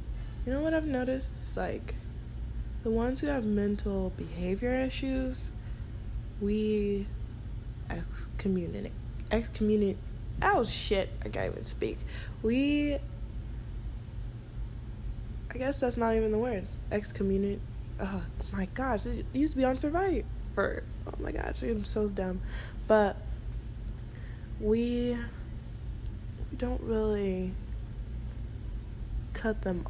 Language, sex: English, female